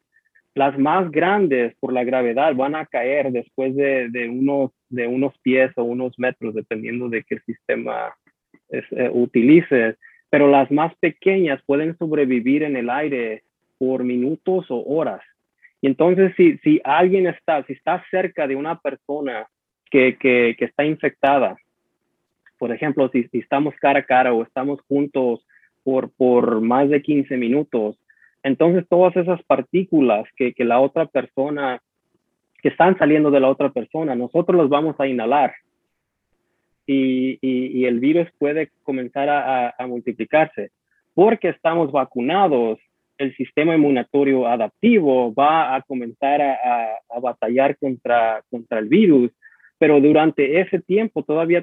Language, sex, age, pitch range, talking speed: Spanish, male, 30-49, 125-155 Hz, 150 wpm